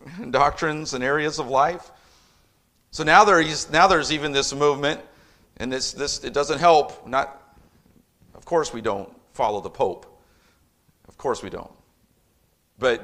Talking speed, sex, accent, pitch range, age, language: 150 wpm, male, American, 115-150 Hz, 40-59, English